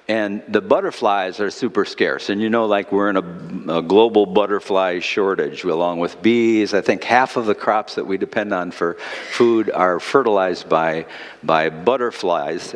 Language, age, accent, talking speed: English, 60-79, American, 175 wpm